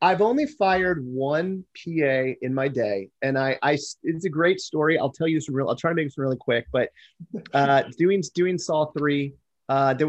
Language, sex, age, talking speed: English, male, 30-49, 215 wpm